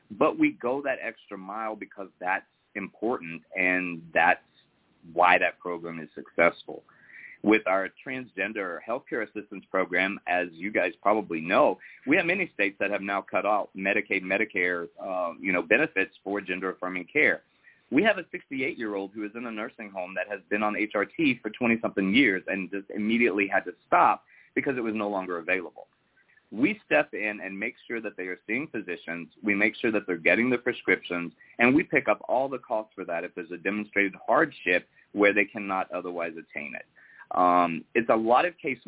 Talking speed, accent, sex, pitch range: 185 wpm, American, male, 90-110 Hz